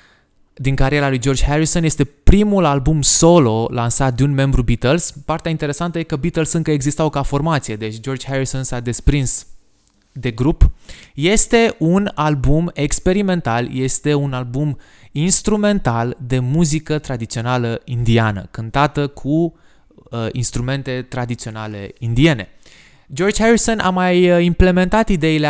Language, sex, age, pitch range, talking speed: Romanian, male, 20-39, 120-150 Hz, 125 wpm